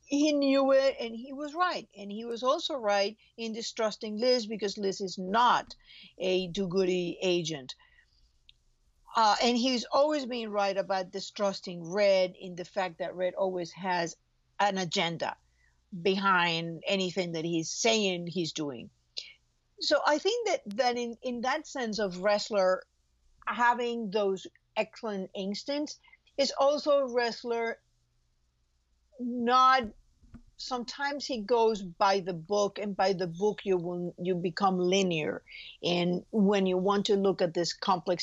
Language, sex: English, female